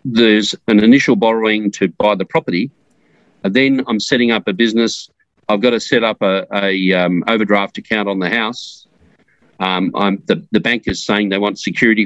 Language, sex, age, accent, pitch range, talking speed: English, male, 40-59, Australian, 100-115 Hz, 185 wpm